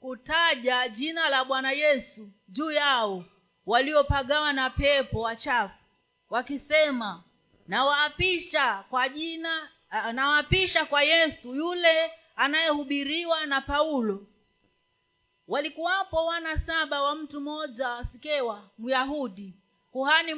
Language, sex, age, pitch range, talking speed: Swahili, female, 40-59, 255-315 Hz, 90 wpm